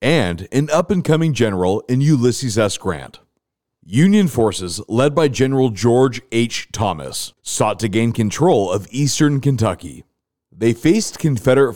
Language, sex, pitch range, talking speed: English, male, 105-140 Hz, 135 wpm